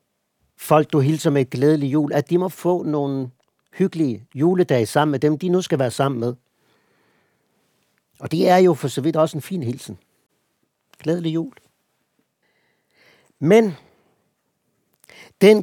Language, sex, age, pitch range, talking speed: Danish, male, 60-79, 140-180 Hz, 145 wpm